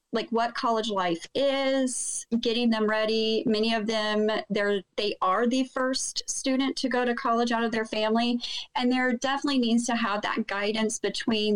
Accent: American